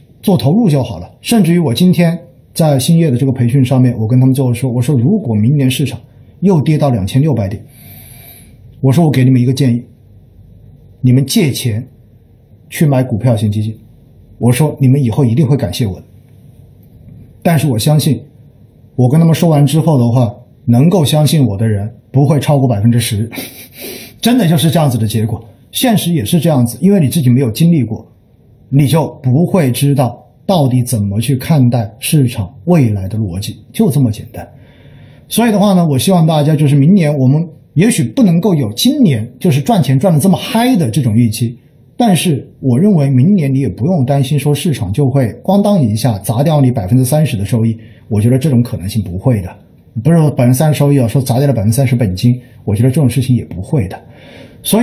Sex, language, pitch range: male, Chinese, 120-155 Hz